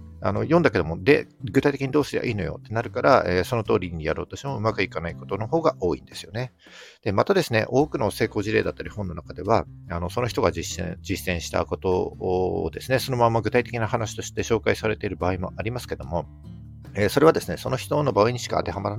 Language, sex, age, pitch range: Japanese, male, 50-69, 90-120 Hz